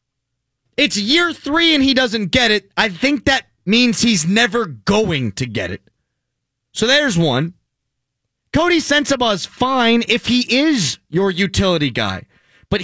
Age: 30-49